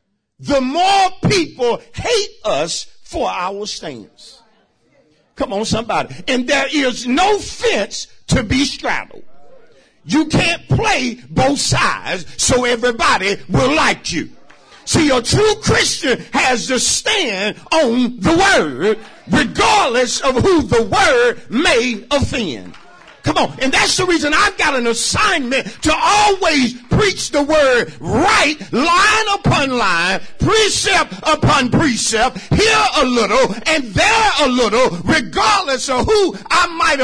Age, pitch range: 50-69, 245-375 Hz